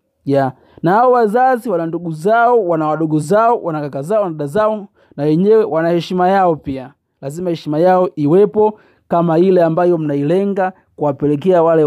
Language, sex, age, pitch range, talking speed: Swahili, male, 30-49, 140-200 Hz, 155 wpm